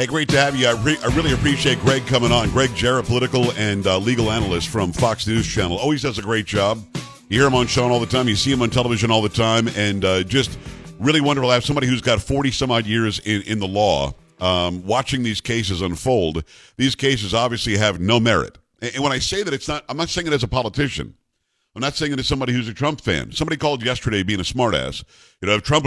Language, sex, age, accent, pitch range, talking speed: English, male, 50-69, American, 110-140 Hz, 250 wpm